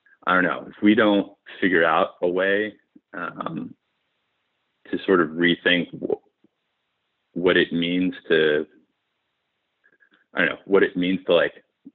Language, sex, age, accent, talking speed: English, male, 30-49, American, 135 wpm